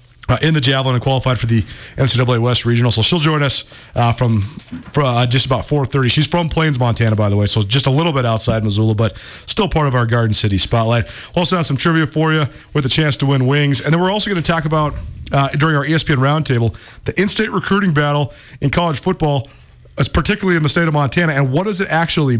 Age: 40-59